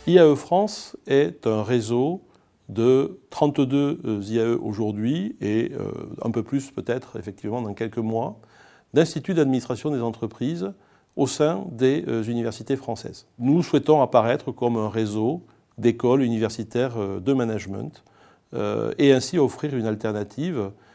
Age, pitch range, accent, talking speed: 40-59, 110-135 Hz, French, 120 wpm